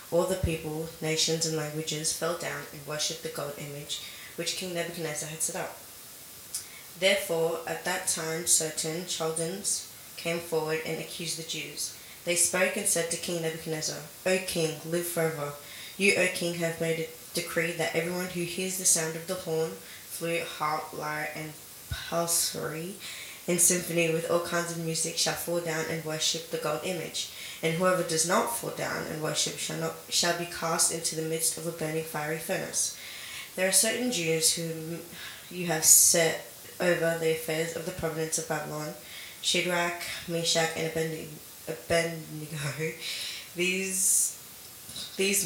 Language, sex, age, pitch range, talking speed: English, female, 20-39, 155-170 Hz, 160 wpm